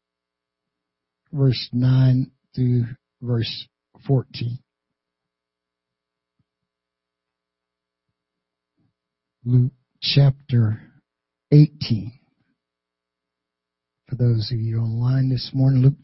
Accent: American